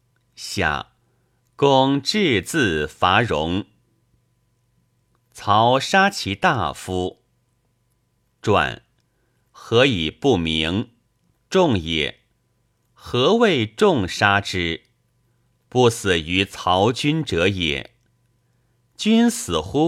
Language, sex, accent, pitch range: Chinese, male, native, 95-125 Hz